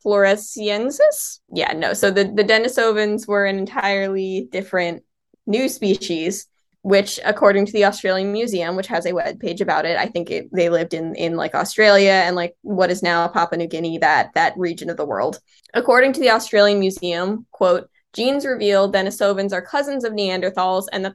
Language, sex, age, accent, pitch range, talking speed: English, female, 10-29, American, 180-215 Hz, 180 wpm